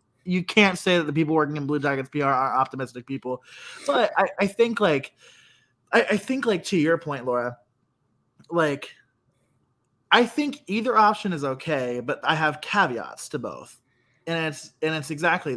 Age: 20-39